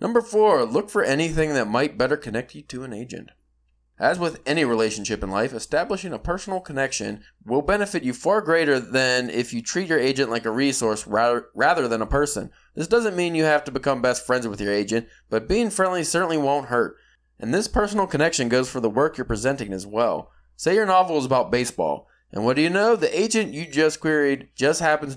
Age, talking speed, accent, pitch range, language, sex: 20-39, 210 wpm, American, 115-160 Hz, English, male